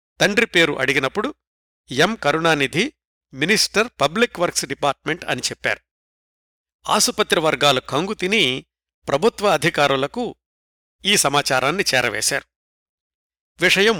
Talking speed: 90 wpm